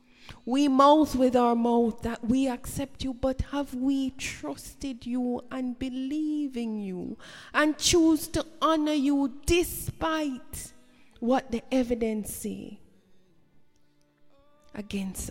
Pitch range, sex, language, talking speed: 210-285 Hz, female, English, 115 wpm